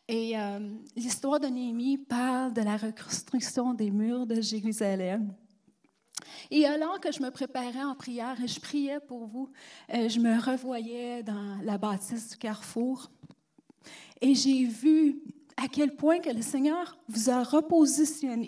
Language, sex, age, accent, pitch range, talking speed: French, female, 30-49, Canadian, 220-275 Hz, 150 wpm